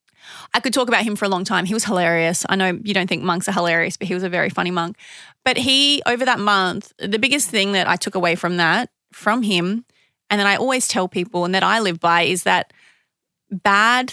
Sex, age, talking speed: female, 30-49, 240 wpm